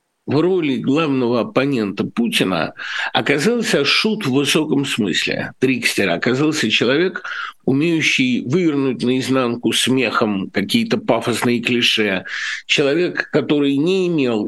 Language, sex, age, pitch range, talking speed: Russian, male, 60-79, 115-160 Hz, 100 wpm